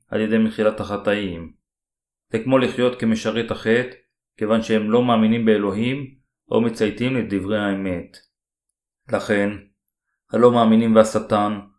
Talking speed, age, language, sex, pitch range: 110 wpm, 30-49, Hebrew, male, 100-115 Hz